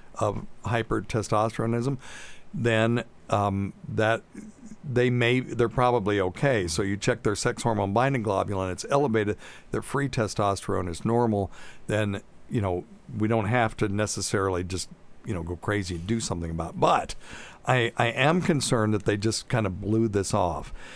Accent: American